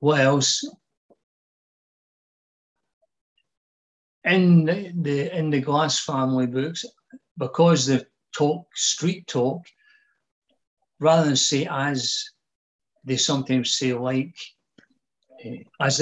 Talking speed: 85 wpm